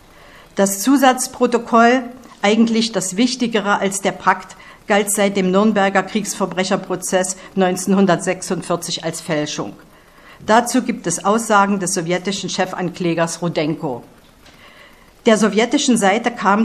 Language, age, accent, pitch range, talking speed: German, 50-69, German, 180-230 Hz, 100 wpm